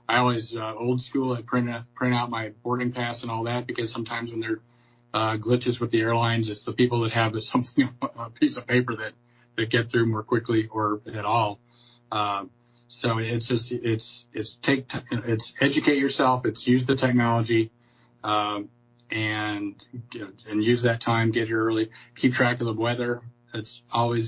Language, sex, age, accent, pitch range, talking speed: English, male, 40-59, American, 115-125 Hz, 190 wpm